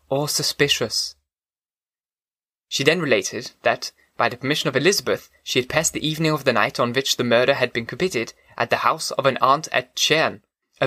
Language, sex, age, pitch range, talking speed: English, male, 20-39, 125-155 Hz, 195 wpm